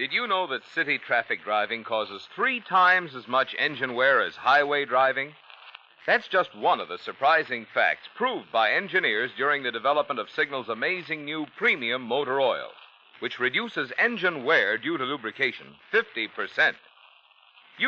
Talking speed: 150 wpm